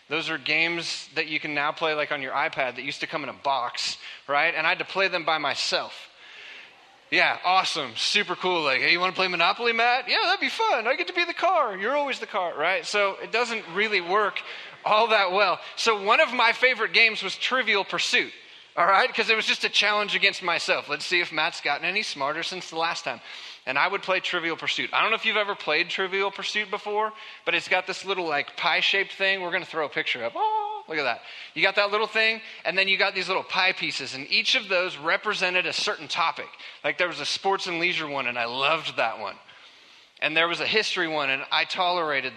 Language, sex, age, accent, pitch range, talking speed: English, male, 30-49, American, 160-215 Hz, 245 wpm